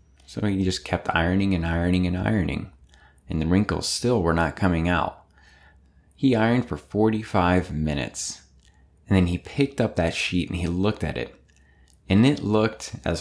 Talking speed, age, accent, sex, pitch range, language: 175 wpm, 30-49, American, male, 70-95 Hz, English